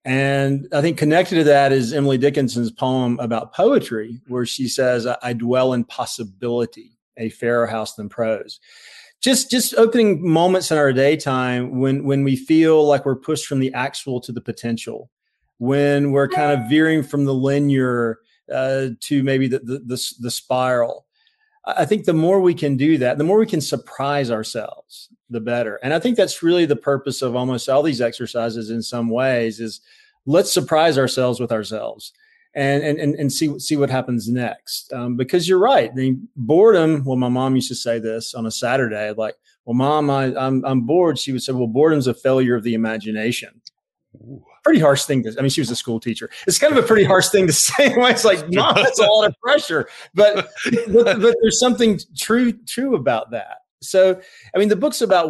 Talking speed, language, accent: 195 wpm, English, American